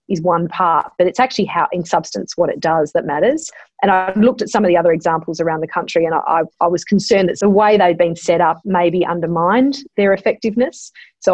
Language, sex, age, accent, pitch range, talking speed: English, female, 40-59, Australian, 175-215 Hz, 240 wpm